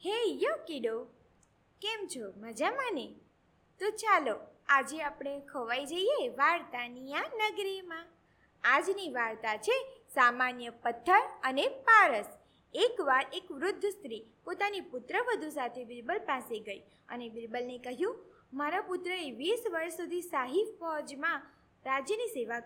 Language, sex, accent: Gujarati, female, native